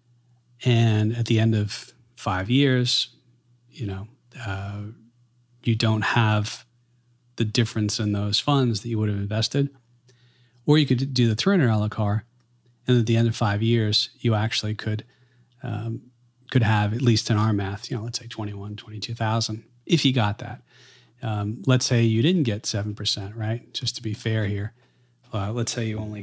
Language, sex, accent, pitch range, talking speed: English, male, American, 110-125 Hz, 190 wpm